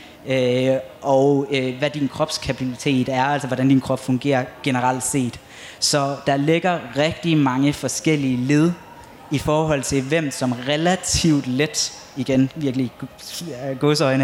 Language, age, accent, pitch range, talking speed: Danish, 20-39, native, 125-145 Hz, 125 wpm